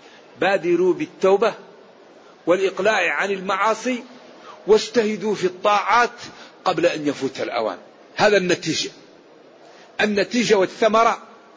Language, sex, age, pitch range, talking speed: Arabic, male, 50-69, 175-230 Hz, 85 wpm